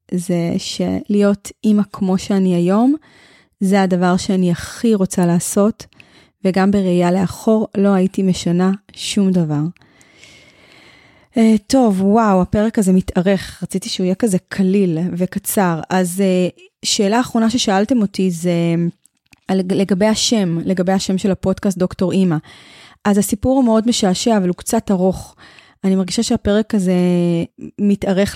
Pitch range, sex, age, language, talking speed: 185-215 Hz, female, 20-39, Hebrew, 125 wpm